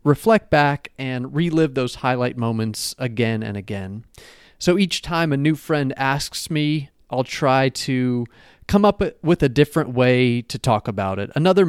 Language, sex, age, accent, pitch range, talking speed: English, male, 30-49, American, 125-165 Hz, 165 wpm